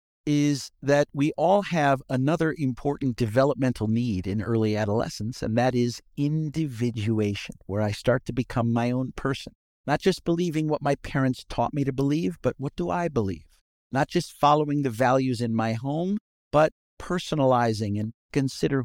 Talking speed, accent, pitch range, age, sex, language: 160 wpm, American, 115-150 Hz, 50-69, male, English